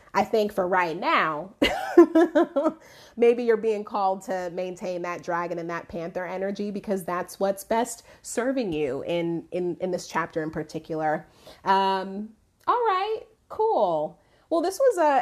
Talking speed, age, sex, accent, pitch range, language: 155 wpm, 30-49, female, American, 180-235 Hz, English